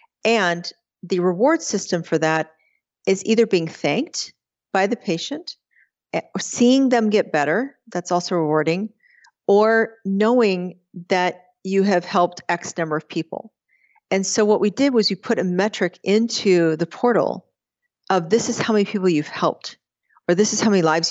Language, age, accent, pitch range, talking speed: English, 40-59, American, 165-205 Hz, 160 wpm